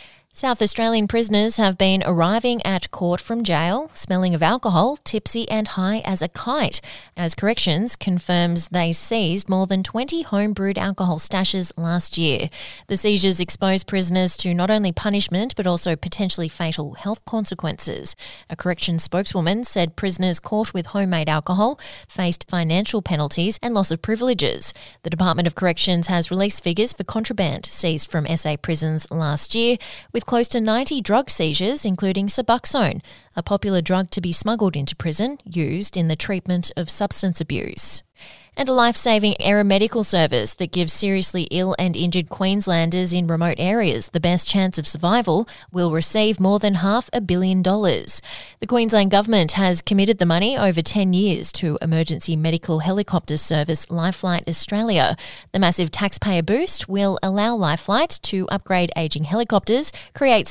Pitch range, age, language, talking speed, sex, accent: 170-210 Hz, 20-39, English, 155 wpm, female, Australian